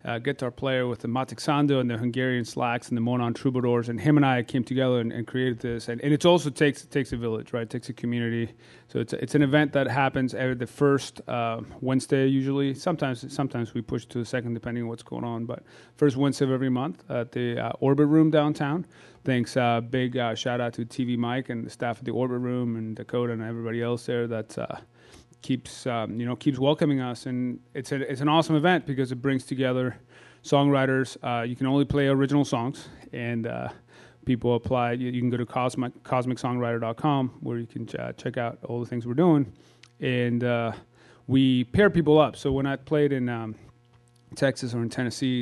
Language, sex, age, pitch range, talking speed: English, male, 30-49, 120-140 Hz, 215 wpm